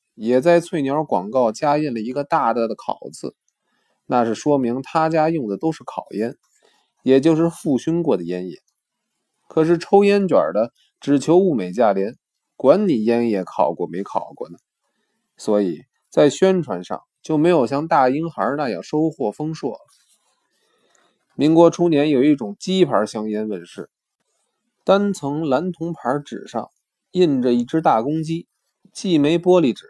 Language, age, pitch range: Chinese, 20-39, 135-180 Hz